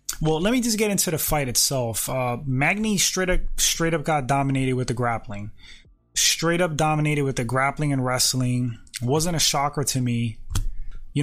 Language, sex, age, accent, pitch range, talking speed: English, male, 20-39, American, 120-150 Hz, 180 wpm